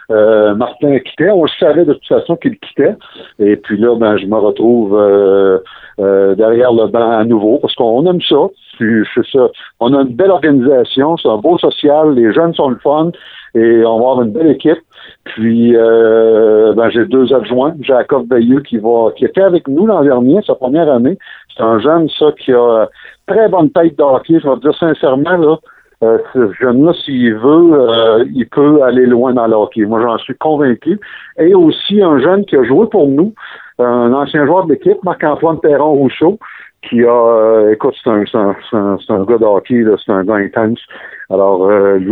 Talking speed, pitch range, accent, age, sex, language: 195 wpm, 110-165 Hz, French, 60-79, male, French